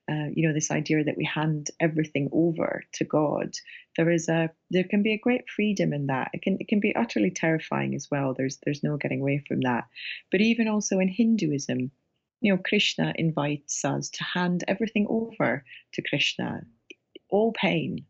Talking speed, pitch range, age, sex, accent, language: 185 wpm, 145-180 Hz, 30-49, female, British, English